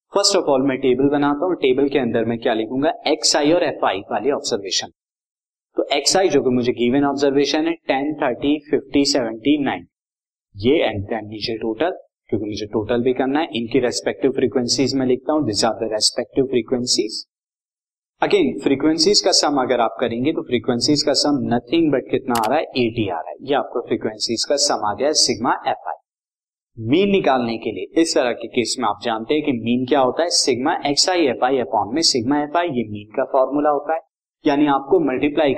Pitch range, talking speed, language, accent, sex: 125-165 Hz, 150 wpm, Hindi, native, male